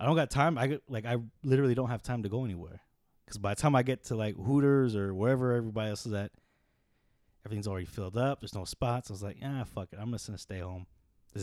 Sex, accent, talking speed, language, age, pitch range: male, American, 255 wpm, English, 20-39, 100-140 Hz